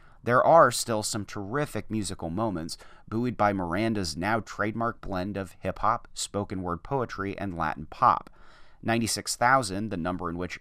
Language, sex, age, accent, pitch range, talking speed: English, male, 30-49, American, 90-115 Hz, 145 wpm